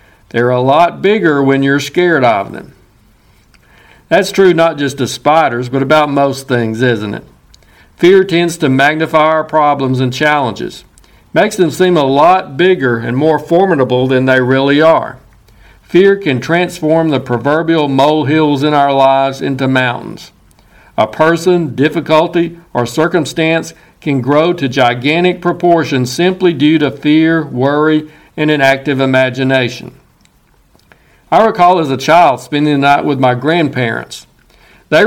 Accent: American